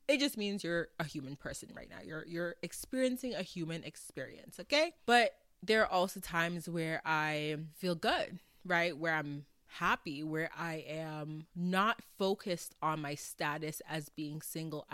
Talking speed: 160 wpm